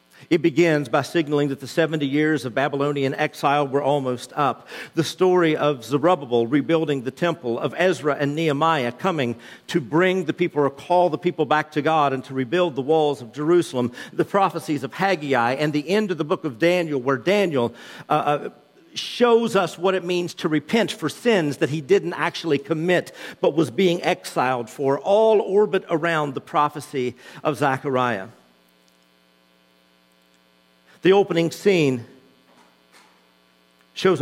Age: 50-69